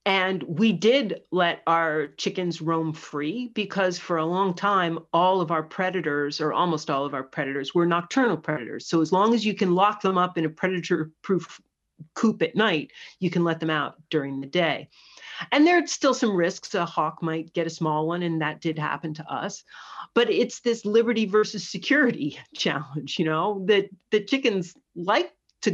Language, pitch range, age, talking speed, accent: English, 165-220 Hz, 40-59, 195 wpm, American